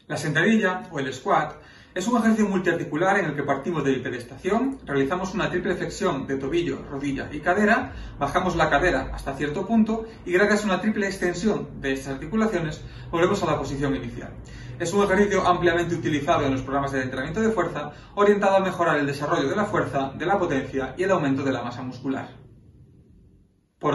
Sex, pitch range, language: male, 135-185 Hz, Spanish